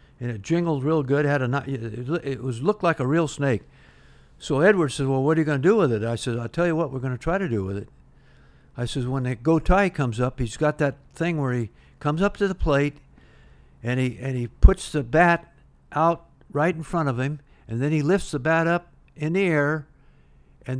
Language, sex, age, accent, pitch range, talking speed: English, male, 60-79, American, 120-165 Hz, 245 wpm